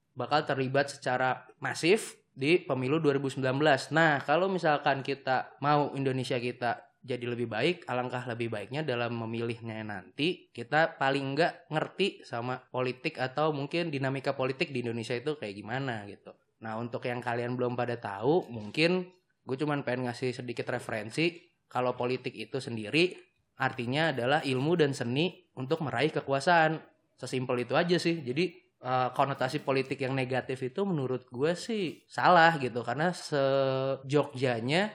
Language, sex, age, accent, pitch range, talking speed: Indonesian, male, 20-39, native, 120-145 Hz, 145 wpm